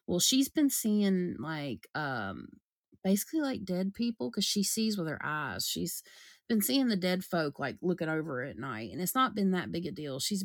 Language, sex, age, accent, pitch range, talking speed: English, female, 30-49, American, 150-200 Hz, 205 wpm